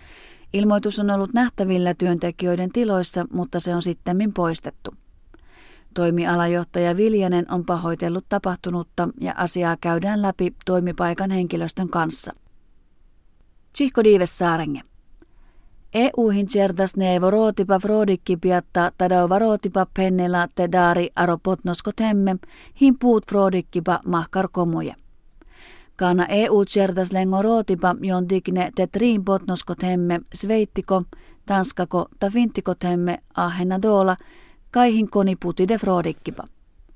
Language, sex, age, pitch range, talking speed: Finnish, female, 30-49, 175-200 Hz, 95 wpm